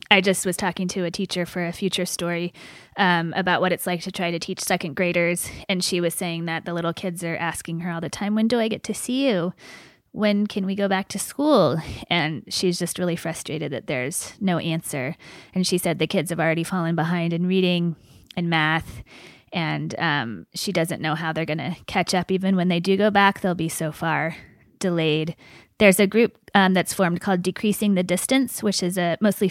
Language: English